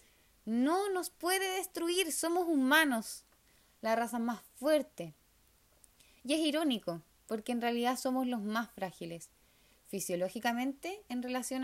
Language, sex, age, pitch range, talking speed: Spanish, female, 20-39, 210-285 Hz, 120 wpm